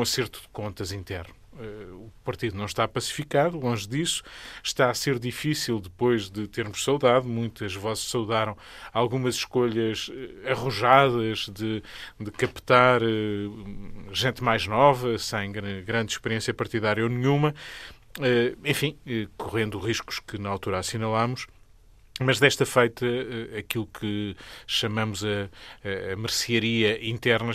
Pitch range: 105-125 Hz